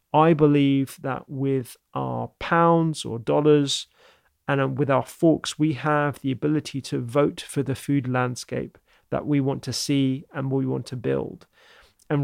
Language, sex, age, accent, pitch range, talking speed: English, male, 30-49, British, 130-150 Hz, 160 wpm